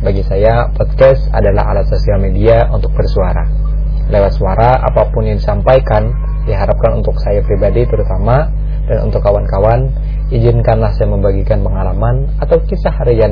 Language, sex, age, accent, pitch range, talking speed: Indonesian, male, 20-39, native, 105-135 Hz, 130 wpm